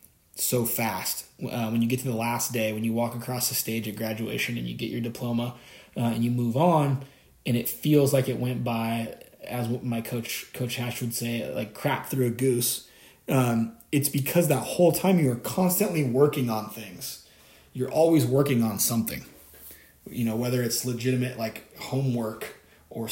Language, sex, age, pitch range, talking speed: English, male, 20-39, 115-130 Hz, 185 wpm